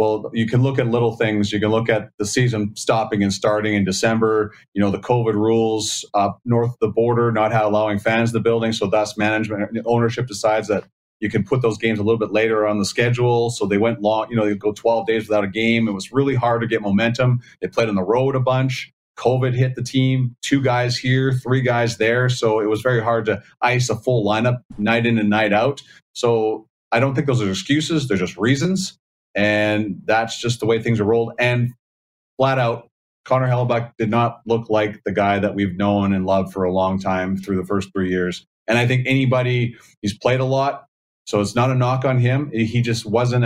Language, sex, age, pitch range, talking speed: English, male, 30-49, 105-120 Hz, 230 wpm